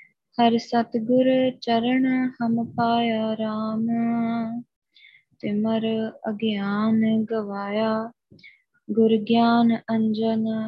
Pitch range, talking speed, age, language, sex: 220-235 Hz, 65 wpm, 20-39, Punjabi, female